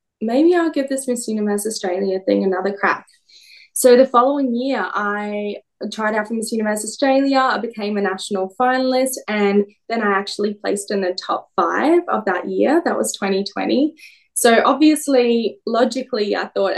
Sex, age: female, 10-29